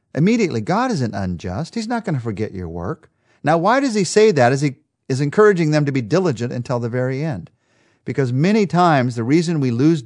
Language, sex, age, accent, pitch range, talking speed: English, male, 50-69, American, 125-185 Hz, 215 wpm